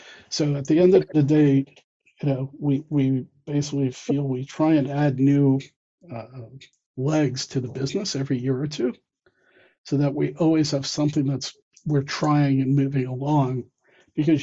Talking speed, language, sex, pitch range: 165 wpm, English, male, 135-150 Hz